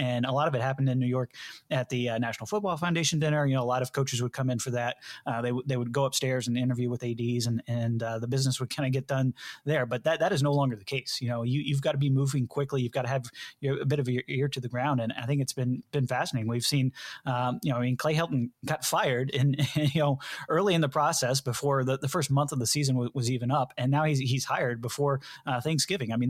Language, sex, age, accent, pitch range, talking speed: English, male, 20-39, American, 125-140 Hz, 290 wpm